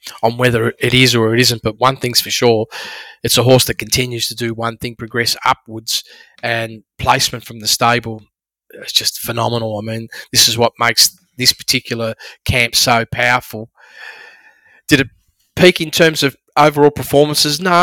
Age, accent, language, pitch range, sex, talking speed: 20-39, Australian, English, 120-160 Hz, male, 170 wpm